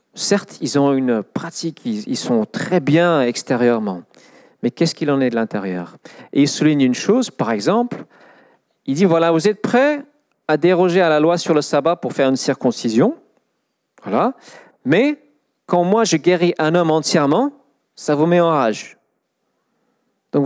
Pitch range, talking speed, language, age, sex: 140-200 Hz, 165 wpm, French, 40-59, male